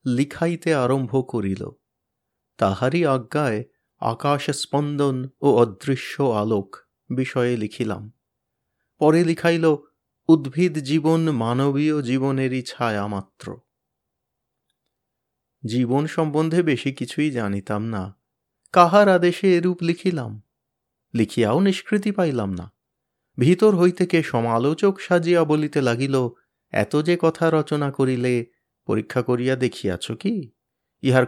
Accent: native